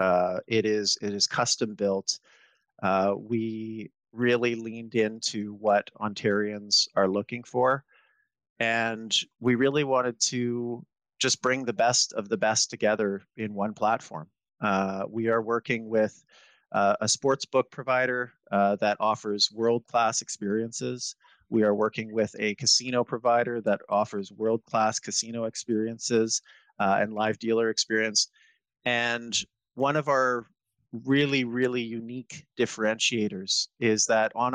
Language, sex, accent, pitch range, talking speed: English, male, American, 105-120 Hz, 130 wpm